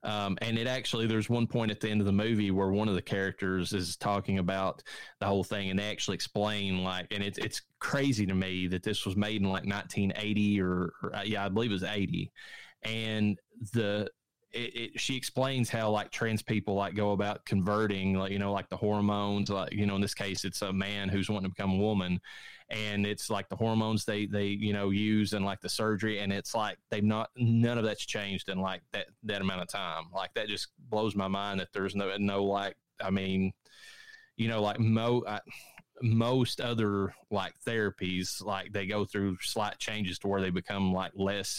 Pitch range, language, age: 95-110 Hz, English, 20-39